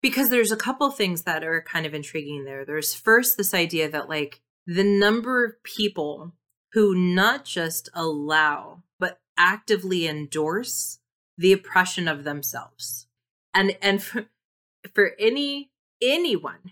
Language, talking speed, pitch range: English, 135 wpm, 155-200 Hz